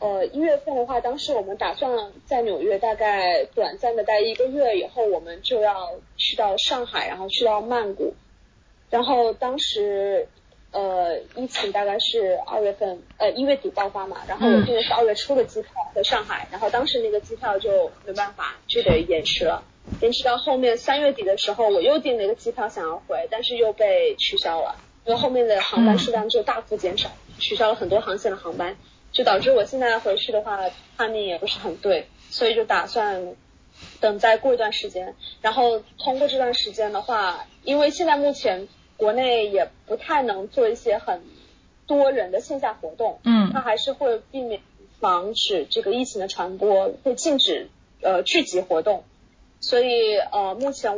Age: 20-39